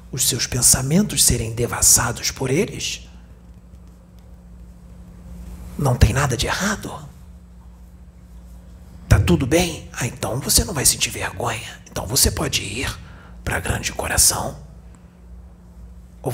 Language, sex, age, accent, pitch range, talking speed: Portuguese, male, 40-59, Brazilian, 85-130 Hz, 115 wpm